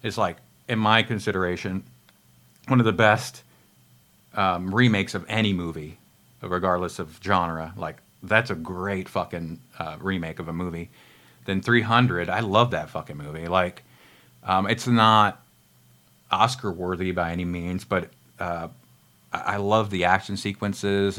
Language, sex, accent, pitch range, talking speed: English, male, American, 90-105 Hz, 140 wpm